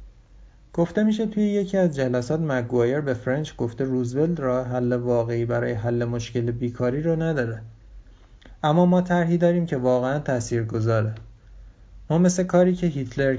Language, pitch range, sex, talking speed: Persian, 115-165 Hz, male, 150 wpm